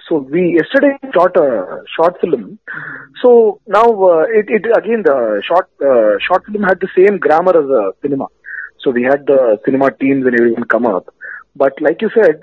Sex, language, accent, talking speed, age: male, English, Indian, 195 wpm, 30-49